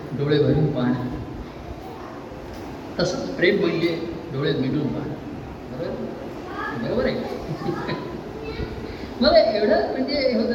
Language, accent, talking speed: Marathi, native, 75 wpm